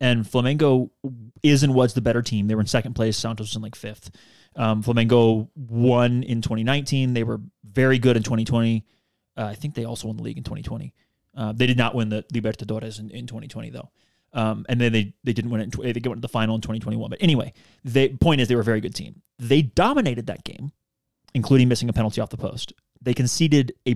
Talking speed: 230 wpm